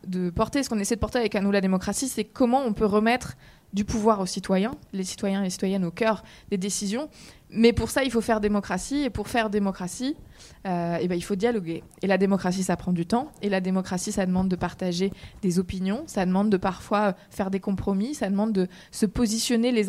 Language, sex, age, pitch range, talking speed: French, female, 20-39, 195-235 Hz, 230 wpm